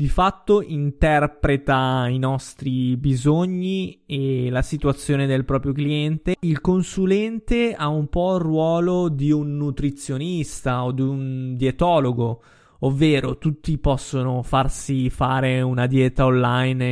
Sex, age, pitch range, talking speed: male, 20-39, 125-145 Hz, 120 wpm